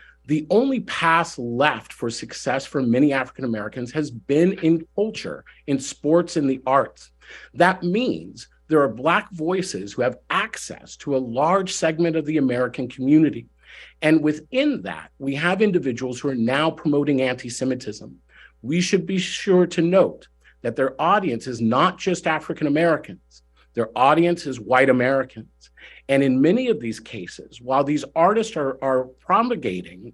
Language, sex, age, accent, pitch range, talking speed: English, male, 50-69, American, 125-170 Hz, 150 wpm